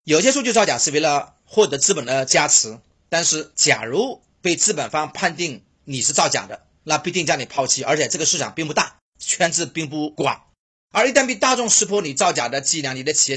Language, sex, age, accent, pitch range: Chinese, male, 30-49, native, 140-195 Hz